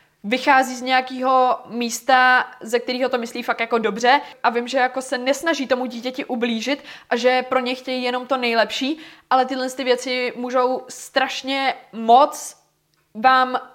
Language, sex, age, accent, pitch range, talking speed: Czech, female, 20-39, native, 225-250 Hz, 155 wpm